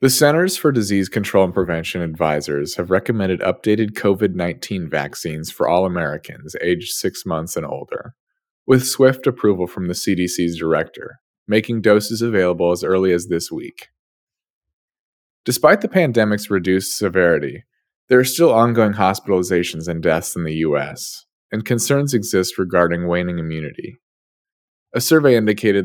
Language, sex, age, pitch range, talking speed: English, male, 20-39, 85-115 Hz, 140 wpm